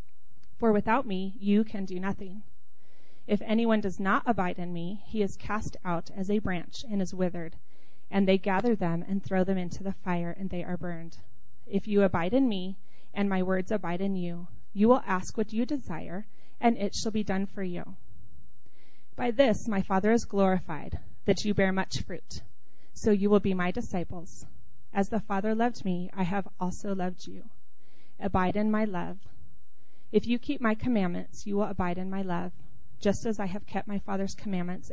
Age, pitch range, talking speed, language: 30-49, 180-215 Hz, 190 wpm, English